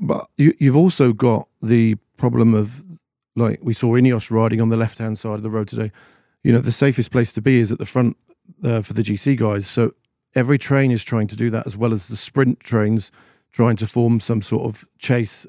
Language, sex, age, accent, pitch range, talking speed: English, male, 40-59, British, 115-135 Hz, 220 wpm